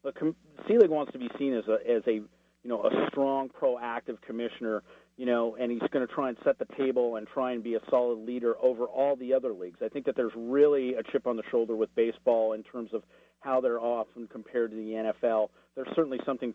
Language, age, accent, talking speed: English, 40-59, American, 235 wpm